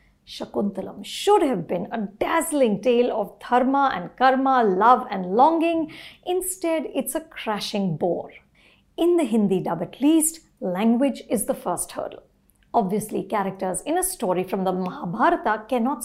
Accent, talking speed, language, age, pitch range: Indian, 145 wpm, English, 50-69, 205-315 Hz